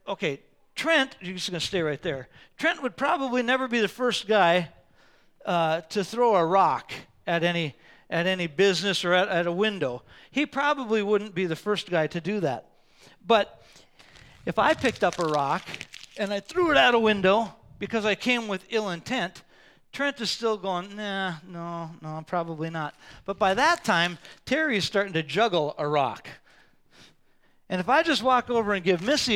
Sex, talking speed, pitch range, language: male, 185 wpm, 190-270 Hz, English